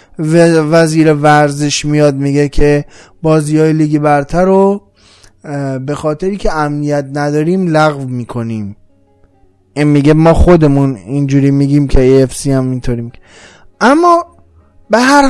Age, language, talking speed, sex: 20-39, Persian, 125 wpm, male